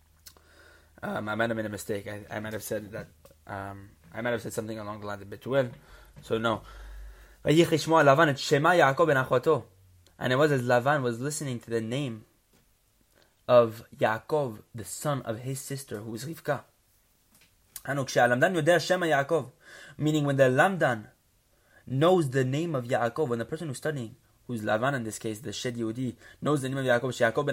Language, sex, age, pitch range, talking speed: English, male, 20-39, 115-145 Hz, 160 wpm